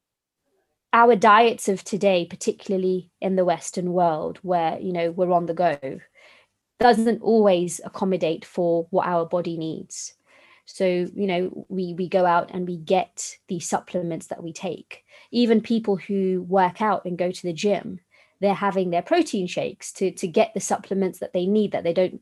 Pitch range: 175-205 Hz